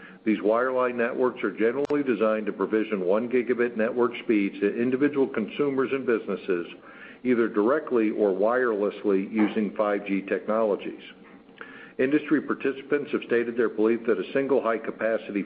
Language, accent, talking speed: English, American, 130 wpm